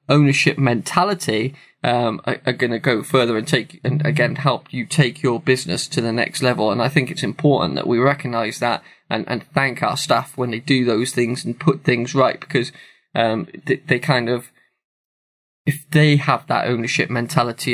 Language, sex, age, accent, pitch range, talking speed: English, male, 20-39, British, 120-145 Hz, 190 wpm